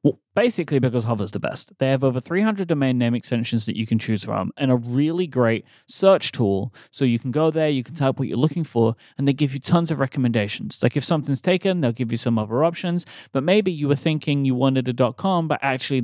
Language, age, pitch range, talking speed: English, 30-49, 120-155 Hz, 235 wpm